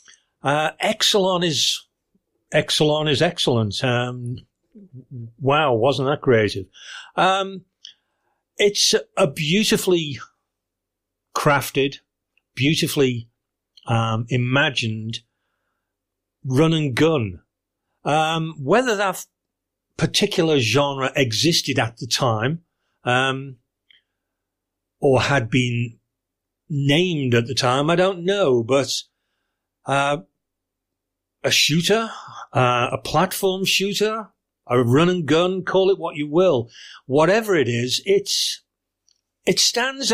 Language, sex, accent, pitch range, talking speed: English, male, British, 120-170 Hz, 95 wpm